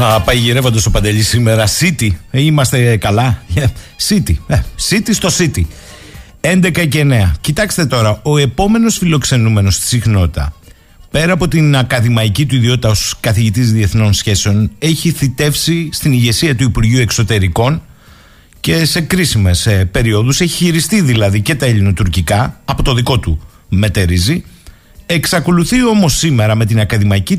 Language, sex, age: Greek, male, 50-69